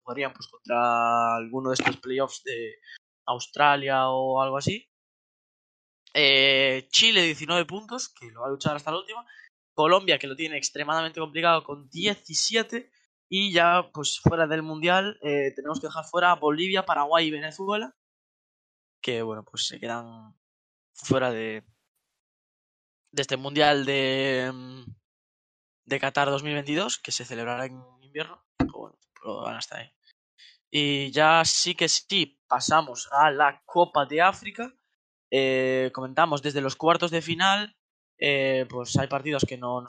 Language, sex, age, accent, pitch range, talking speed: Spanish, male, 10-29, Spanish, 130-170 Hz, 150 wpm